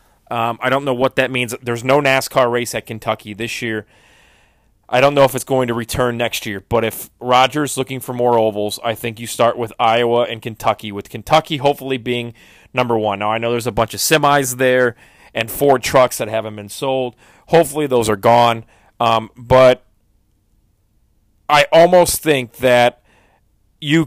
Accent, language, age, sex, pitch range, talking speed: American, English, 30-49, male, 110-135 Hz, 180 wpm